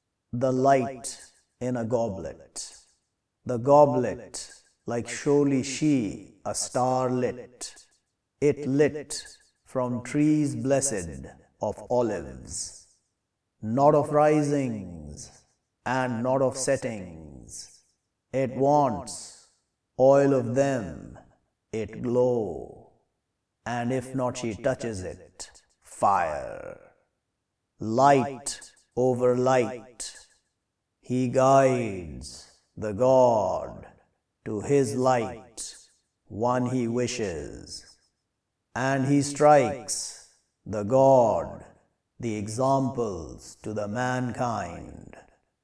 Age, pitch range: 50-69, 105-135 Hz